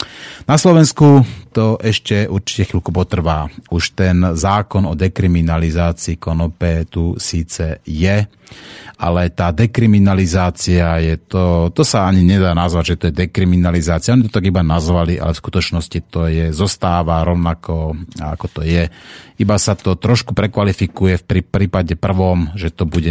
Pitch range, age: 85-110 Hz, 30-49